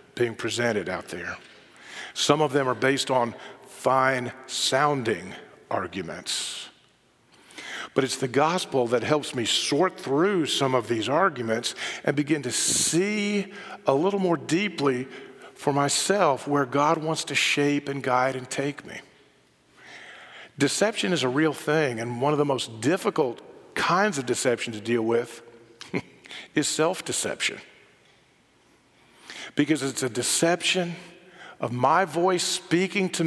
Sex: male